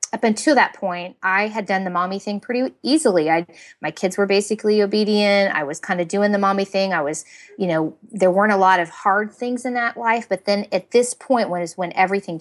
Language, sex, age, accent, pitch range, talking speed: English, female, 30-49, American, 175-215 Hz, 235 wpm